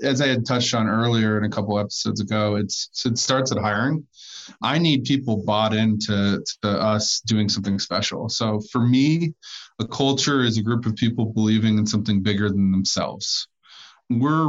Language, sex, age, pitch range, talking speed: English, male, 20-39, 105-125 Hz, 180 wpm